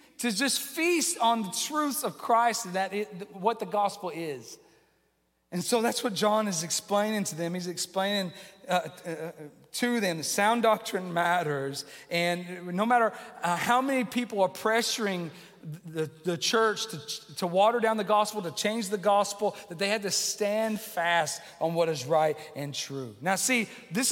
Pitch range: 170-225 Hz